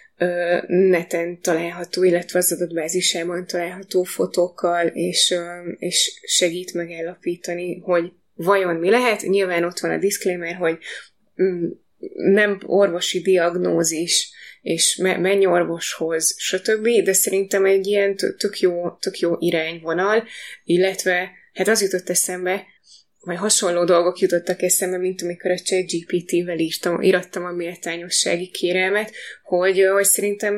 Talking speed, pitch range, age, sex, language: 115 wpm, 170-190 Hz, 20-39, female, Hungarian